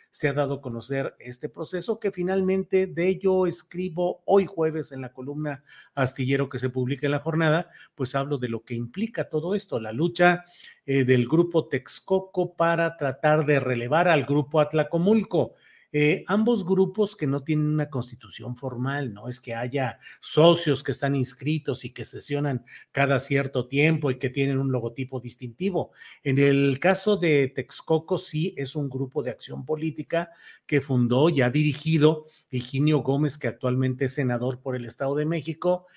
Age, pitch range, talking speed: 40-59, 130-160 Hz, 170 wpm